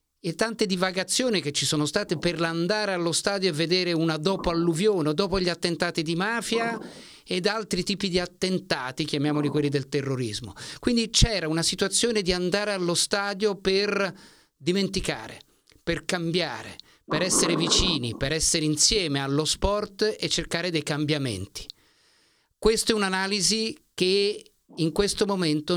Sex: male